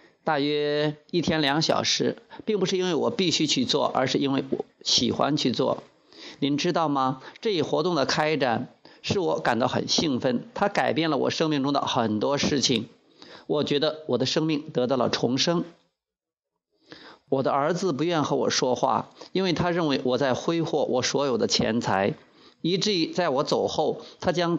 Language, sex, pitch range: Chinese, male, 135-170 Hz